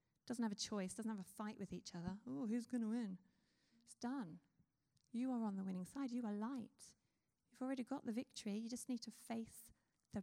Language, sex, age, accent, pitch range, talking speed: English, female, 30-49, British, 205-255 Hz, 225 wpm